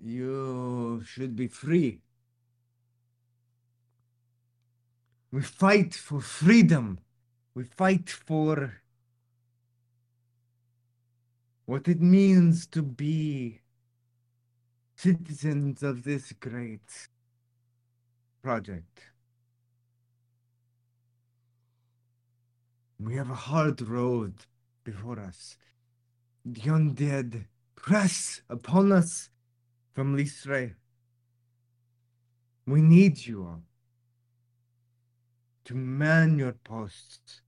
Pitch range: 120-130 Hz